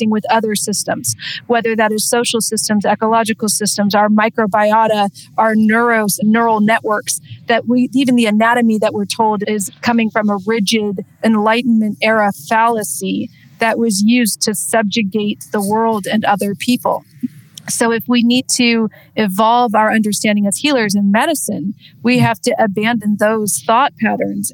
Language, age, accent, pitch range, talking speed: English, 40-59, American, 205-230 Hz, 150 wpm